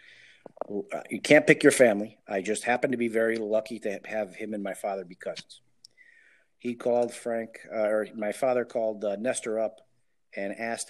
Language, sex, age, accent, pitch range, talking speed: English, male, 40-59, American, 95-110 Hz, 180 wpm